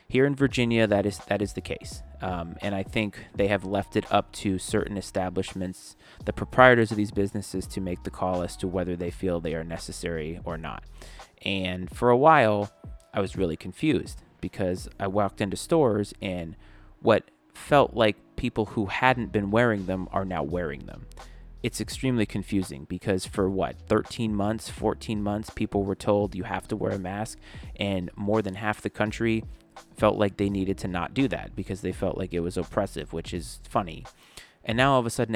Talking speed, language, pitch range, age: 195 wpm, English, 90-110 Hz, 30-49